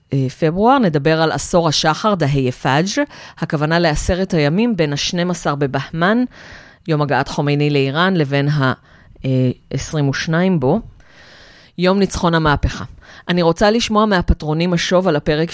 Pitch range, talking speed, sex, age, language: 140-180 Hz, 115 wpm, female, 30-49, Hebrew